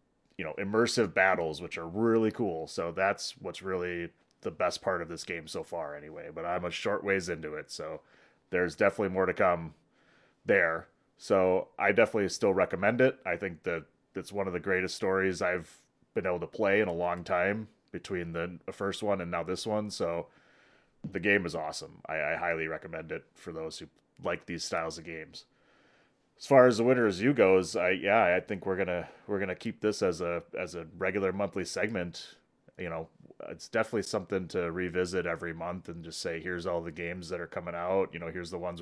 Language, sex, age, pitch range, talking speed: English, male, 30-49, 85-95 Hz, 210 wpm